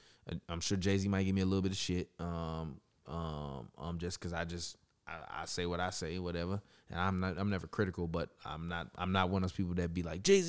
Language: English